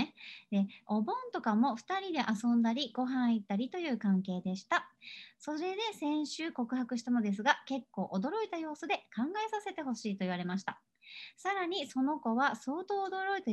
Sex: male